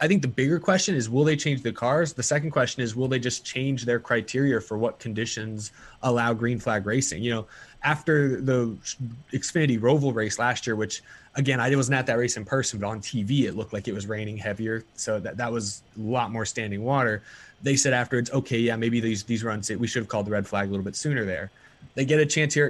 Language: English